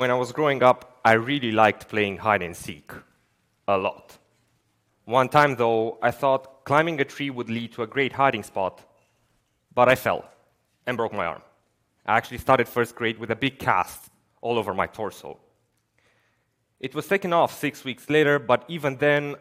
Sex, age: male, 30-49